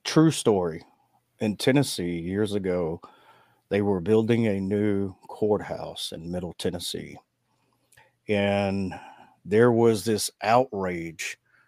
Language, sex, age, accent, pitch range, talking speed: English, male, 40-59, American, 95-120 Hz, 105 wpm